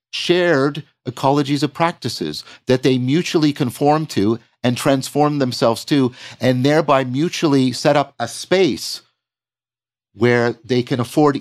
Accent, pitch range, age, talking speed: American, 115-145 Hz, 50-69, 125 wpm